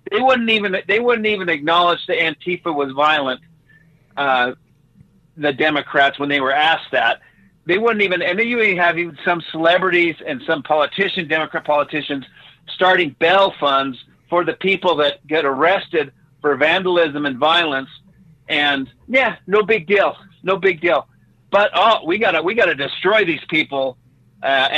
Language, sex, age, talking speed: English, male, 50-69, 155 wpm